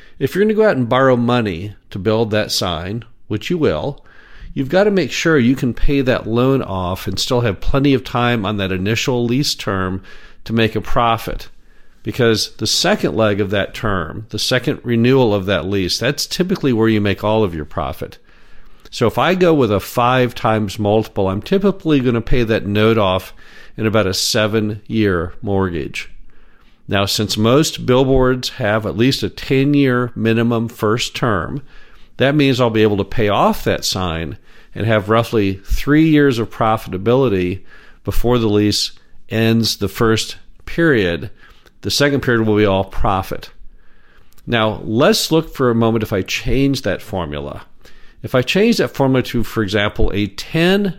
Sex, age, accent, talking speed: male, 50-69, American, 175 wpm